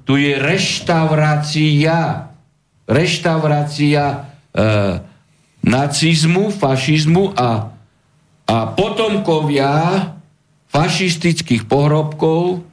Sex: male